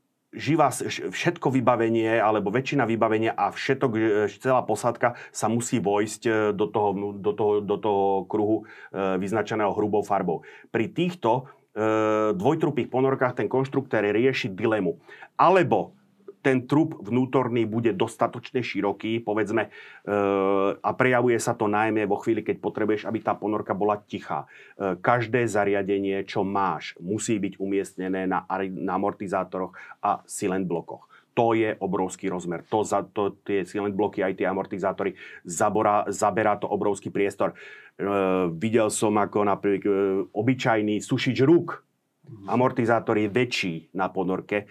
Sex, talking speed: male, 130 wpm